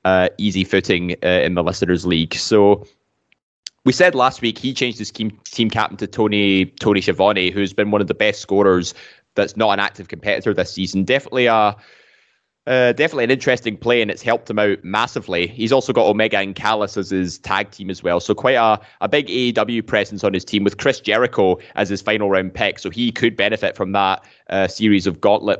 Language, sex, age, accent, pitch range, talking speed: English, male, 10-29, British, 100-120 Hz, 210 wpm